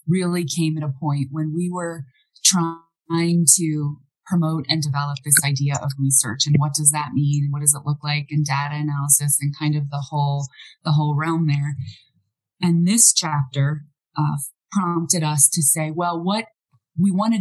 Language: English